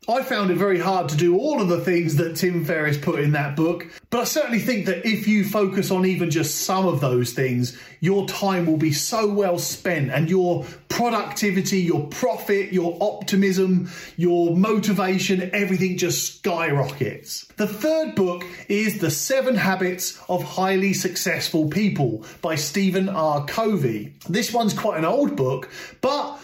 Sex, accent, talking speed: male, British, 170 wpm